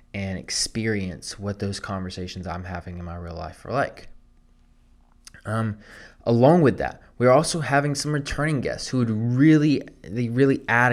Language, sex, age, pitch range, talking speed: English, male, 20-39, 100-130 Hz, 160 wpm